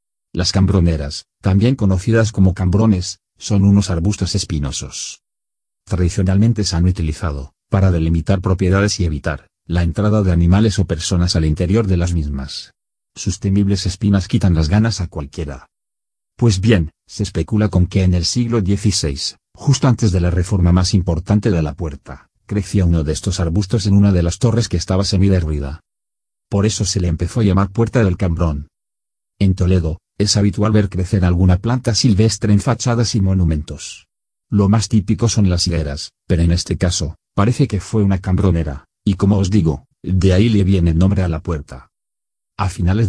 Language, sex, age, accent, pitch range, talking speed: Spanish, male, 40-59, Spanish, 85-105 Hz, 175 wpm